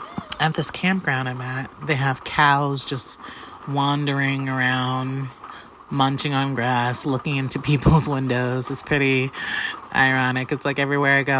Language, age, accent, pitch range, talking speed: English, 30-49, American, 130-150 Hz, 135 wpm